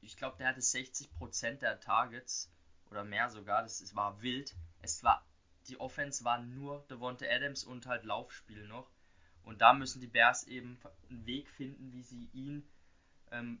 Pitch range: 115-130 Hz